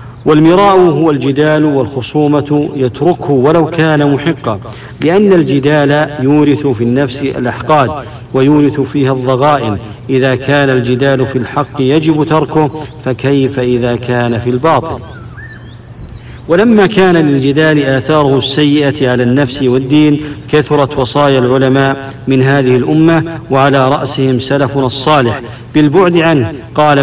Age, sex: 50-69, male